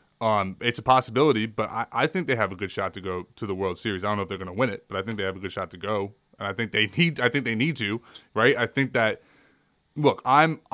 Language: English